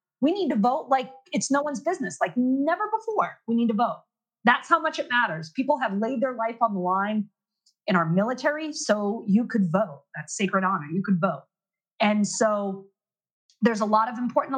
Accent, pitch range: American, 200-295 Hz